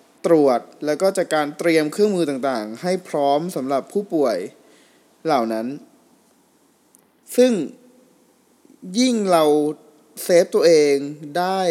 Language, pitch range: Thai, 140-185 Hz